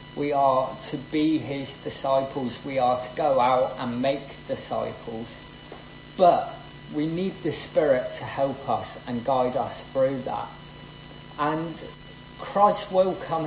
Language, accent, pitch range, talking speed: English, British, 130-165 Hz, 140 wpm